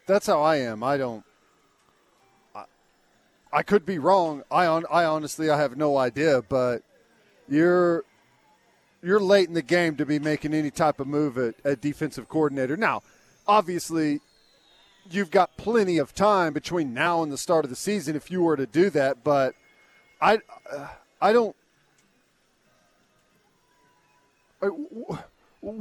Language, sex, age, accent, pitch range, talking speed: English, male, 40-59, American, 155-205 Hz, 145 wpm